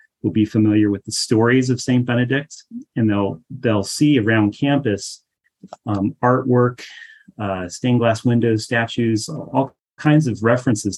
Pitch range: 100-115 Hz